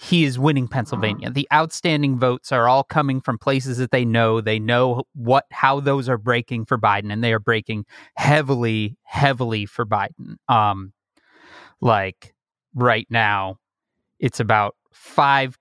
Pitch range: 115-140 Hz